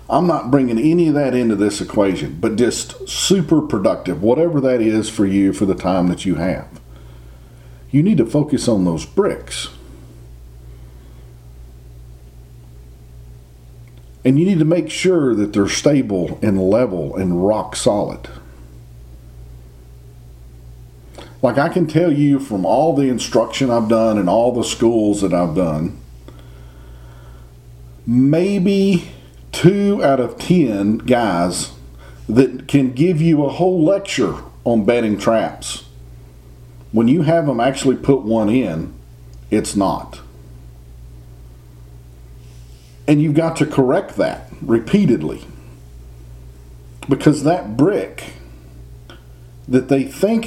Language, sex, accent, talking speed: English, male, American, 120 wpm